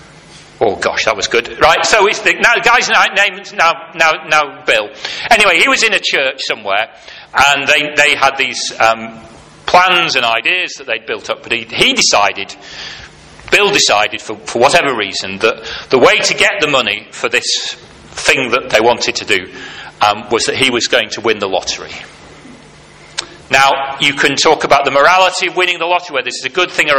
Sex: male